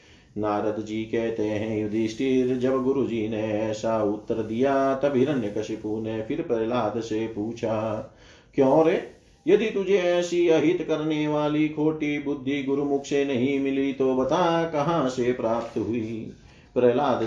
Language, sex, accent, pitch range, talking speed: Hindi, male, native, 120-145 Hz, 140 wpm